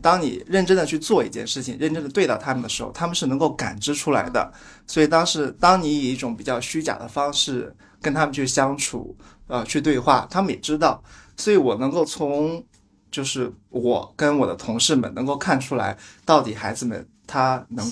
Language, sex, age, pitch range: Chinese, male, 20-39, 130-175 Hz